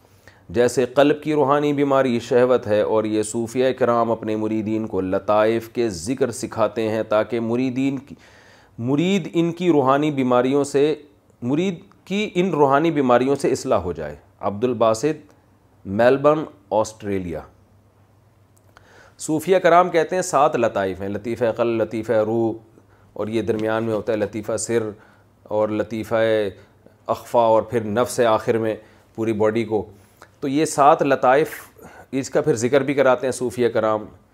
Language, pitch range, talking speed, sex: Urdu, 105-135 Hz, 145 wpm, male